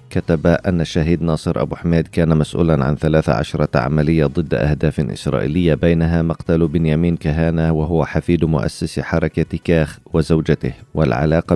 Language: Arabic